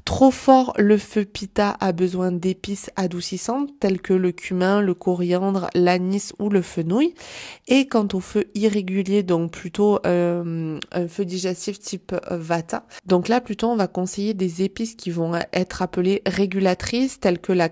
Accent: French